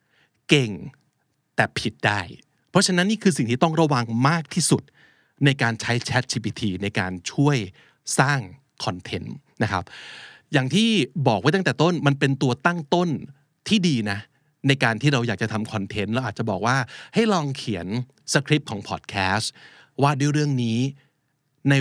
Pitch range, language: 110-150 Hz, Thai